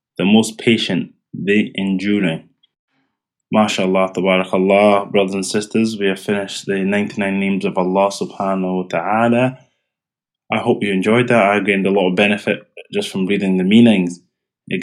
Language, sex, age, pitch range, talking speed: English, male, 20-39, 95-110 Hz, 155 wpm